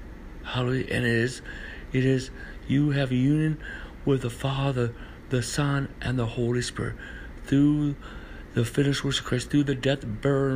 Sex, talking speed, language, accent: male, 160 wpm, English, American